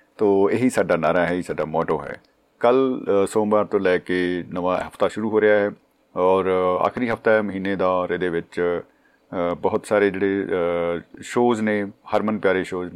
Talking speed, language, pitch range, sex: 165 wpm, Punjabi, 90-105 Hz, male